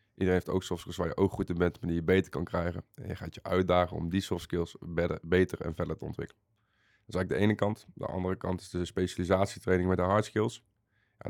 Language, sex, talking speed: Dutch, male, 260 wpm